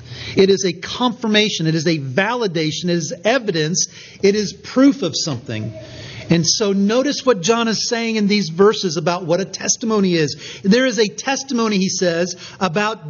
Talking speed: 175 wpm